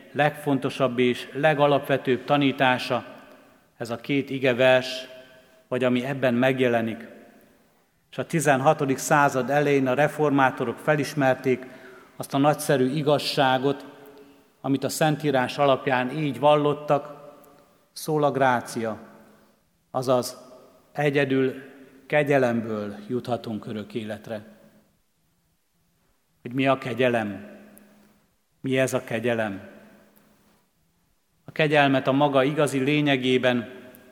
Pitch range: 125-145 Hz